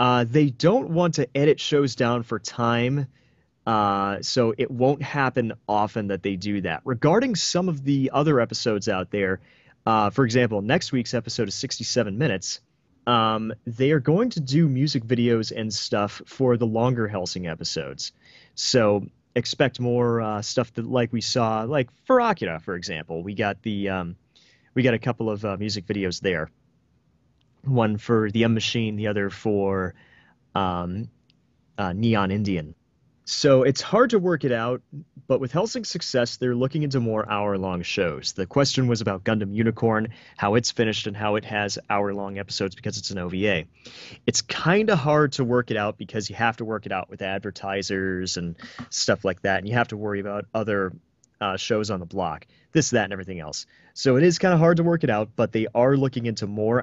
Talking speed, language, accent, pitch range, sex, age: 185 wpm, English, American, 100-125 Hz, male, 30-49